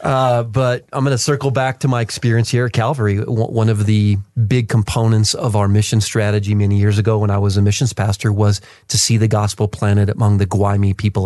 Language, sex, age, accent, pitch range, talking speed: English, male, 30-49, American, 105-125 Hz, 220 wpm